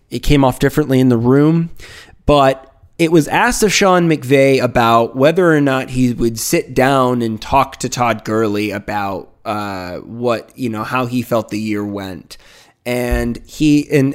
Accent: American